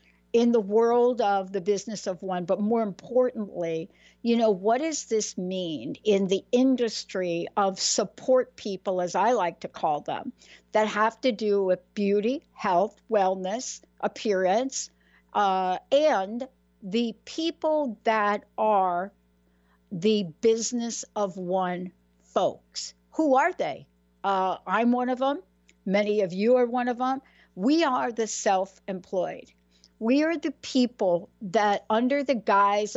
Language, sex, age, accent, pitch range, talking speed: English, female, 60-79, American, 190-250 Hz, 140 wpm